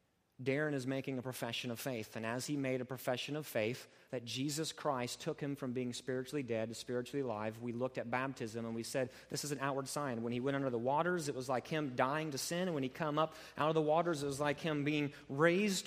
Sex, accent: male, American